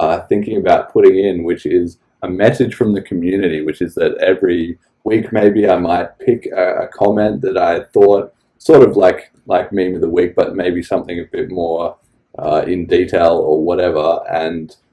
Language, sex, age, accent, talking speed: English, male, 20-39, Australian, 190 wpm